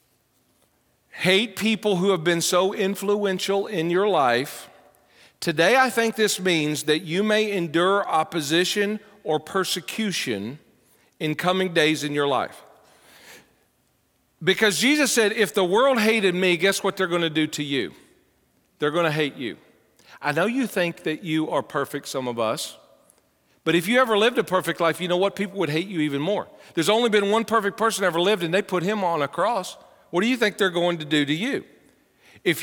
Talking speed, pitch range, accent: 190 wpm, 165-215 Hz, American